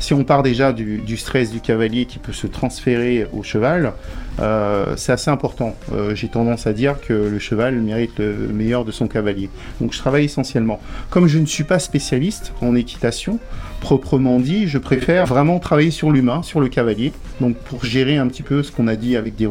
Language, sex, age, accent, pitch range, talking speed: French, male, 50-69, French, 115-145 Hz, 210 wpm